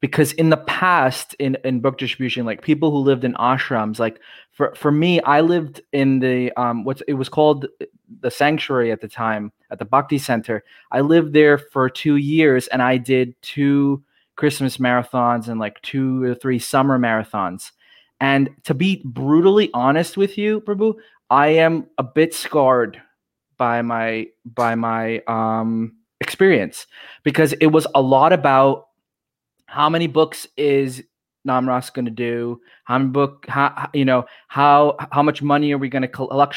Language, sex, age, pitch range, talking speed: English, male, 20-39, 125-155 Hz, 170 wpm